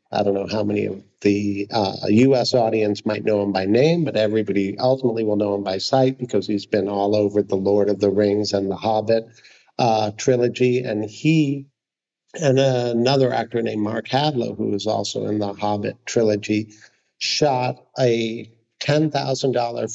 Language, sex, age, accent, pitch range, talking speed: English, male, 50-69, American, 110-135 Hz, 170 wpm